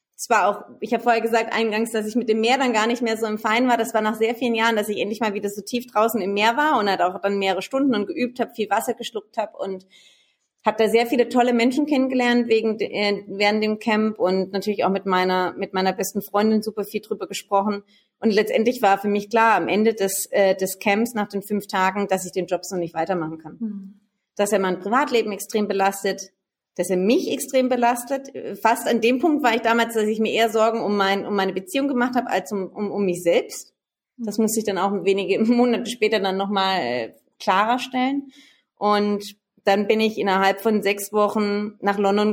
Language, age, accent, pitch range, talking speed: German, 30-49, German, 195-225 Hz, 225 wpm